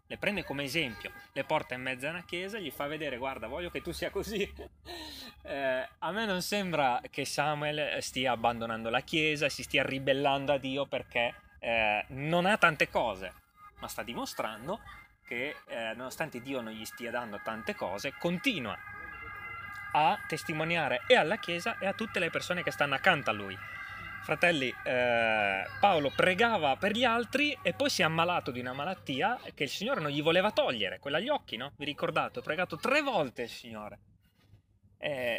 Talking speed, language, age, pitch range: 180 wpm, Italian, 20-39, 120-185 Hz